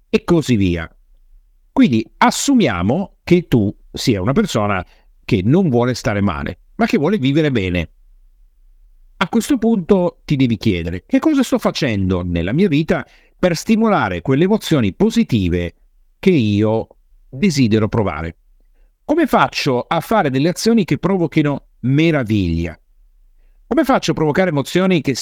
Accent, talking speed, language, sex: native, 135 wpm, Italian, male